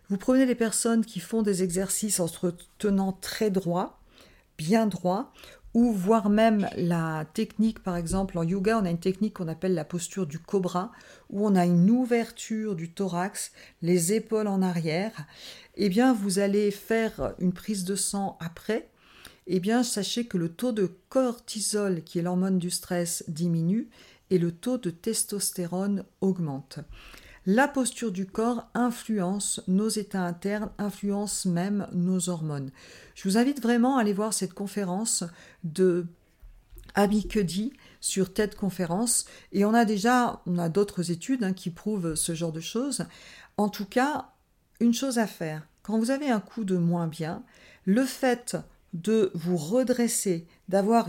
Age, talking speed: 50-69, 165 wpm